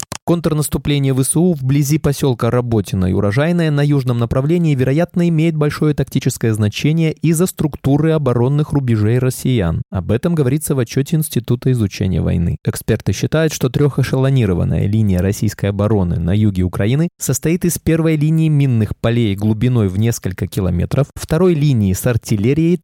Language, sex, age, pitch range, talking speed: Russian, male, 20-39, 105-155 Hz, 135 wpm